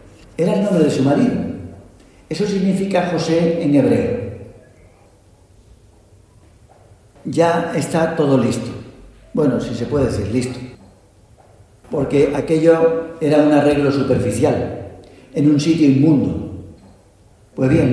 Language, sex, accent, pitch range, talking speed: Spanish, male, Spanish, 105-160 Hz, 110 wpm